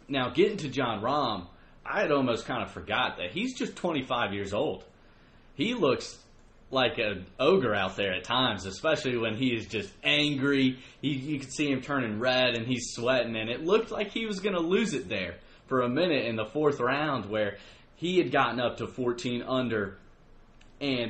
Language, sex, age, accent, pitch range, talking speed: English, male, 30-49, American, 110-140 Hz, 195 wpm